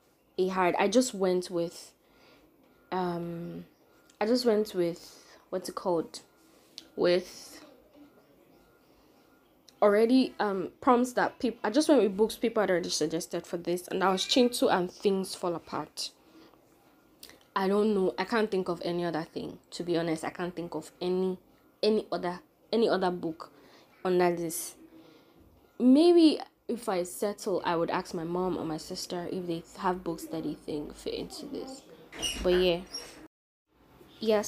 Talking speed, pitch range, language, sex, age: 155 wpm, 175-215 Hz, English, female, 20-39